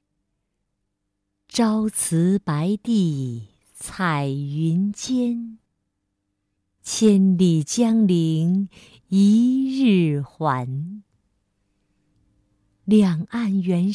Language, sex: Chinese, female